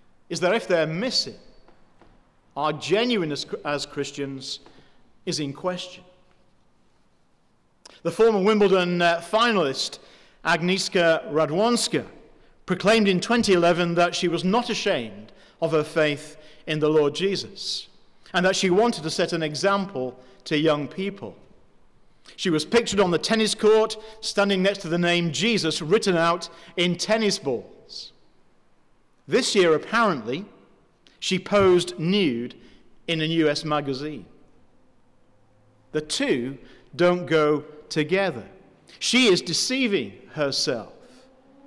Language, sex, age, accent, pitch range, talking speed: English, male, 40-59, British, 155-205 Hz, 115 wpm